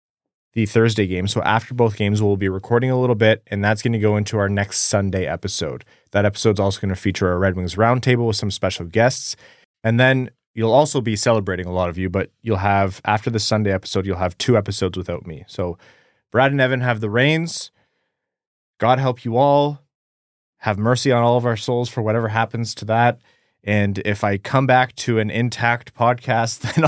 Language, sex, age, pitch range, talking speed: English, male, 20-39, 100-125 Hz, 210 wpm